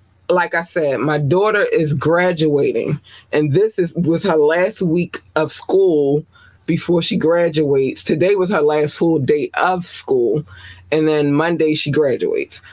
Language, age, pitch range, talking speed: English, 20-39, 140-175 Hz, 150 wpm